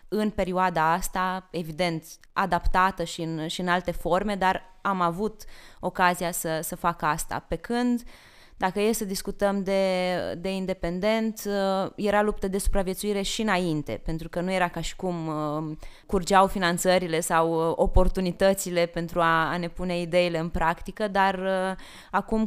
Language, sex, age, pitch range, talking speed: Romanian, female, 20-39, 175-205 Hz, 145 wpm